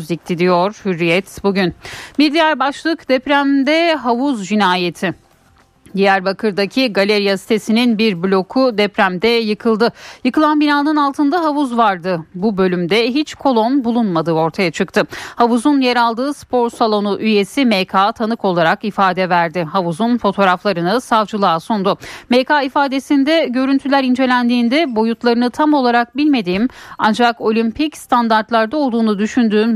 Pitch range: 195-245 Hz